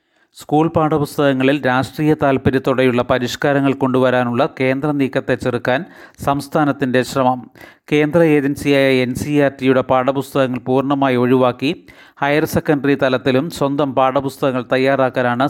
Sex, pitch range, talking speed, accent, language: male, 130-145 Hz, 95 wpm, native, Malayalam